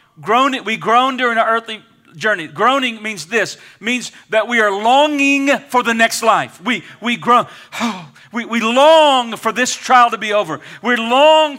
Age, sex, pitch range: 40-59, male, 160-240 Hz